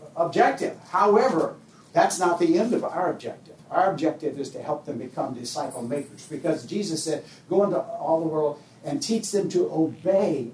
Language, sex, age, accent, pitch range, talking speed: English, male, 60-79, American, 150-200 Hz, 175 wpm